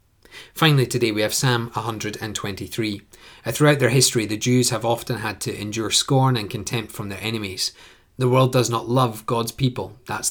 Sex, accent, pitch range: male, British, 105-130 Hz